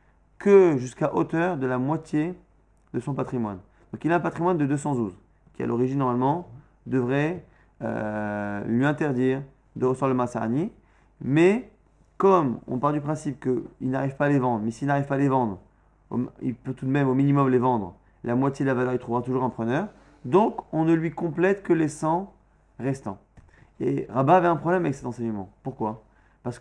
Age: 30-49